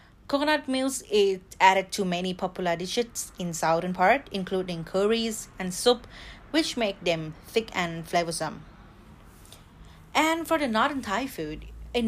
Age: 30-49